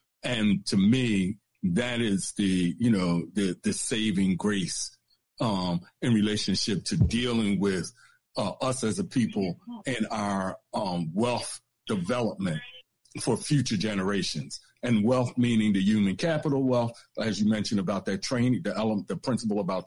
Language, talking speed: English, 150 wpm